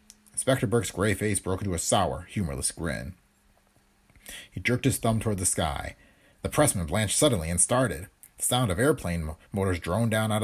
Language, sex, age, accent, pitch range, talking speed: English, male, 40-59, American, 90-125 Hz, 185 wpm